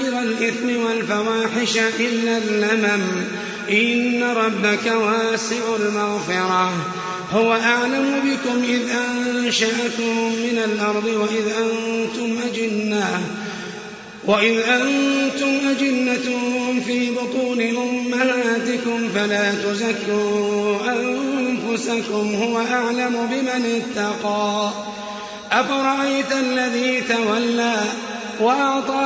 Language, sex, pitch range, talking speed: Arabic, male, 210-255 Hz, 70 wpm